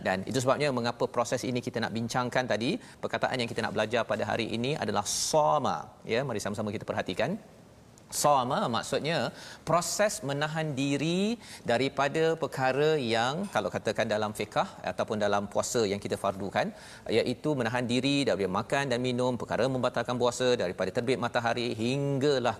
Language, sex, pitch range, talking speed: Malayalam, male, 115-145 Hz, 150 wpm